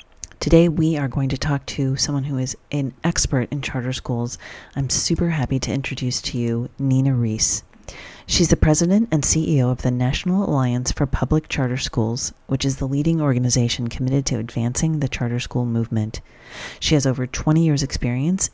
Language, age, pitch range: English, 40-59, 125-155 Hz